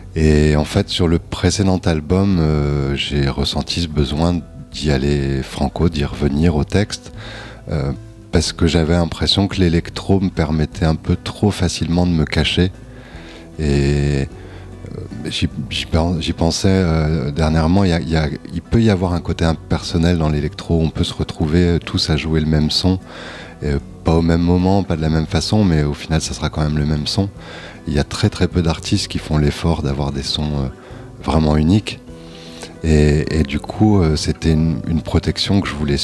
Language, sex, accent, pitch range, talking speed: French, male, French, 75-90 Hz, 175 wpm